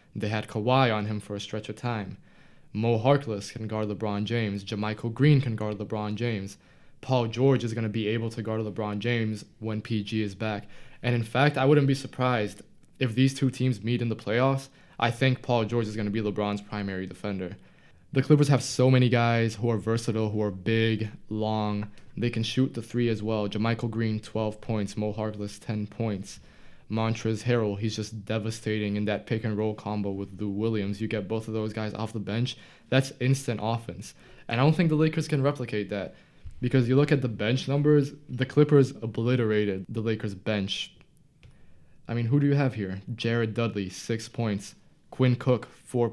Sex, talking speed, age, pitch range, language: male, 195 wpm, 20-39, 105-125 Hz, English